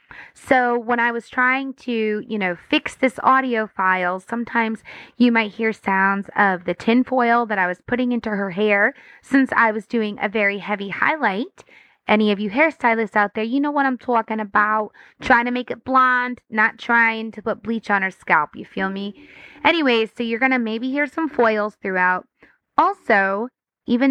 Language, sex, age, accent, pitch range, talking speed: English, female, 20-39, American, 205-255 Hz, 185 wpm